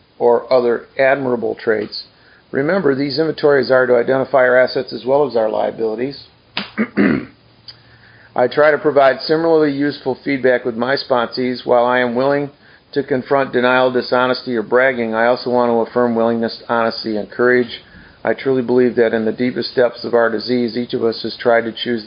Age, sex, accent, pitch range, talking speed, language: 50-69, male, American, 115-130 Hz, 175 wpm, English